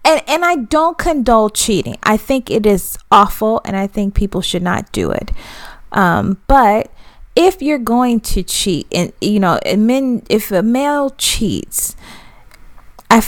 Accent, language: American, English